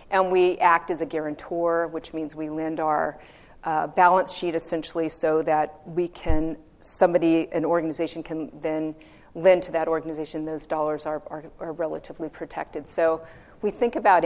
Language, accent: English, American